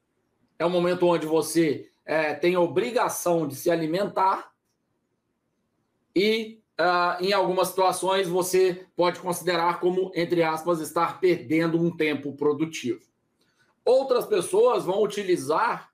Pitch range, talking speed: 165-210 Hz, 115 wpm